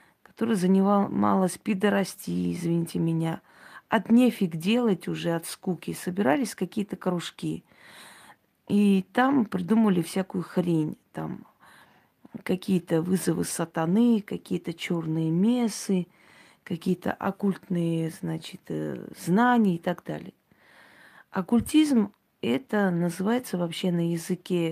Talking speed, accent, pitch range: 95 wpm, native, 175-215 Hz